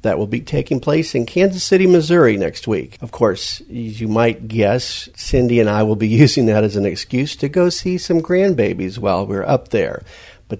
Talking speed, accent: 210 wpm, American